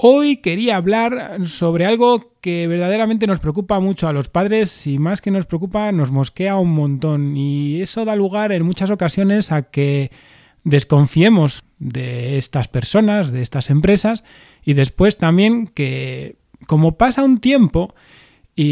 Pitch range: 145-205 Hz